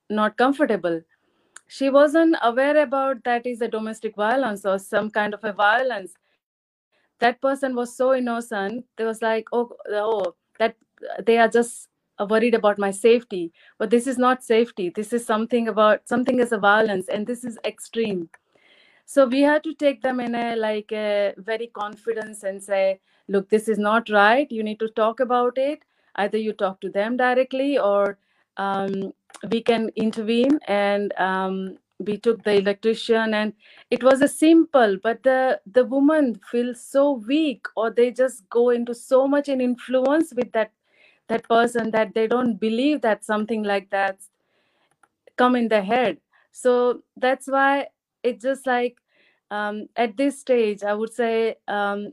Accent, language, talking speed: native, Hindi, 170 wpm